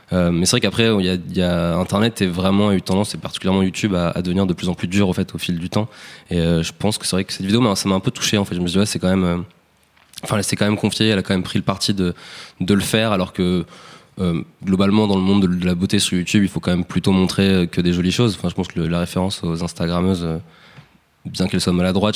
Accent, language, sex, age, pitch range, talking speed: French, French, male, 20-39, 90-100 Hz, 305 wpm